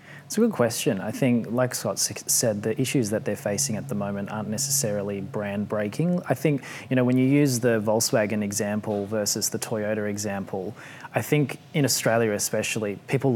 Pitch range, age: 110-130 Hz, 20-39